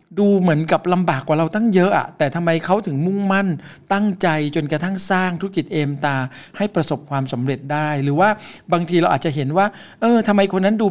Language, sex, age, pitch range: Thai, male, 60-79, 140-180 Hz